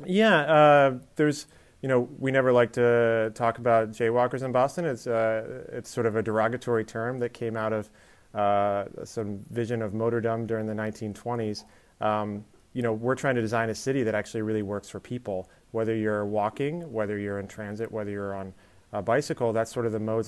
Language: English